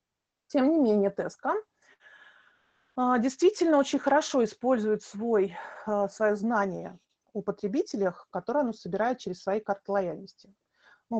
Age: 30-49